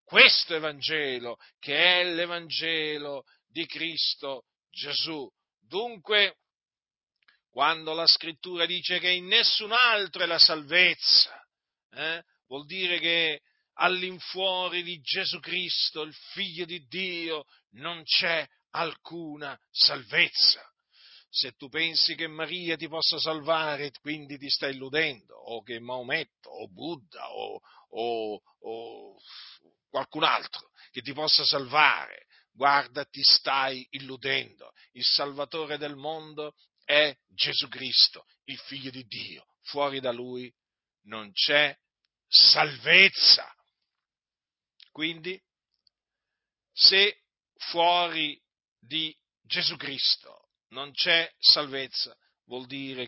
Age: 50-69